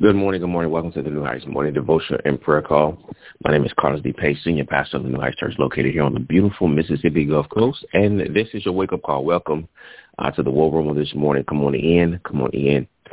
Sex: male